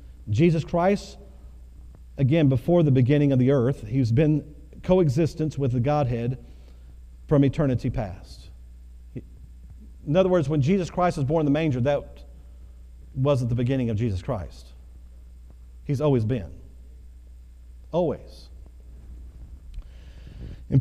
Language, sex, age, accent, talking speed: English, male, 40-59, American, 120 wpm